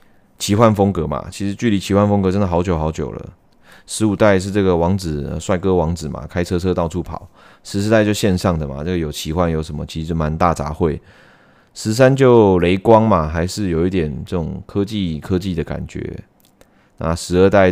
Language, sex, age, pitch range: Chinese, male, 20-39, 80-100 Hz